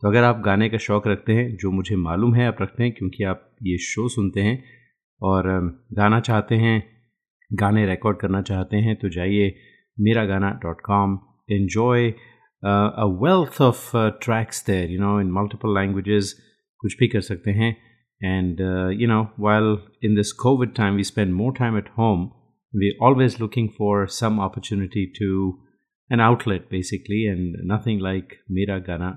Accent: native